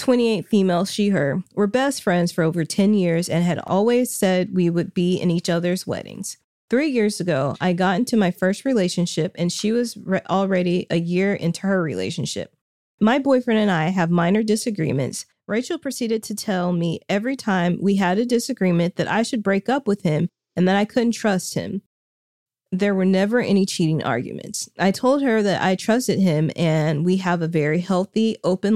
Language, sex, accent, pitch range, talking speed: English, female, American, 170-210 Hz, 195 wpm